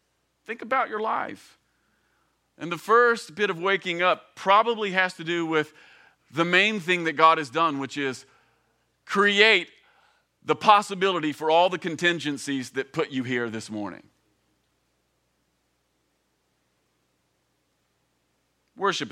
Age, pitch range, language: 40-59, 125-175 Hz, English